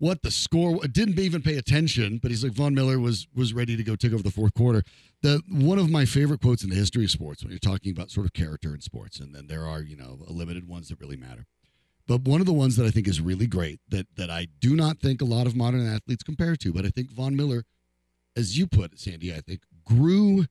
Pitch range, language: 85-130 Hz, English